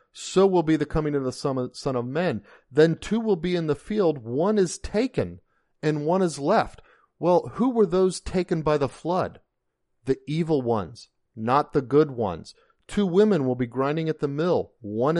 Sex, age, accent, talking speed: male, 40-59, American, 190 wpm